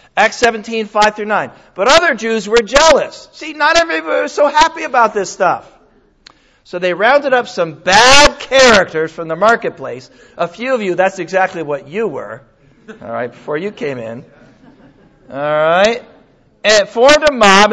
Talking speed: 170 wpm